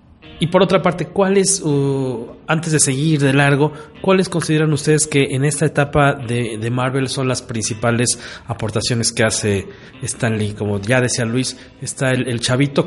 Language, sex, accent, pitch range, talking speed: Spanish, male, Mexican, 115-140 Hz, 170 wpm